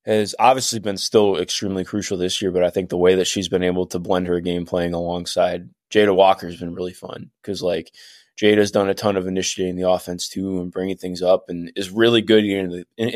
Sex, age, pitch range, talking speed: male, 20-39, 90-105 Hz, 230 wpm